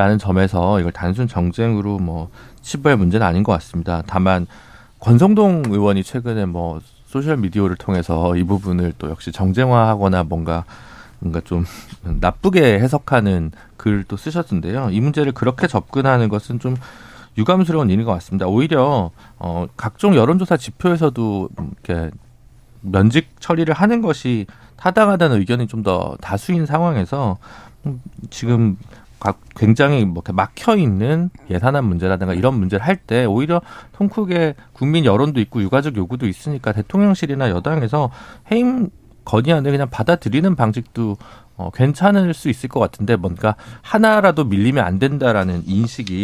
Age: 40-59